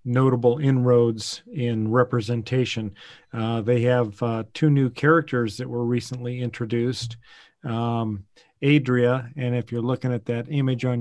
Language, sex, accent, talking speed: English, male, American, 135 wpm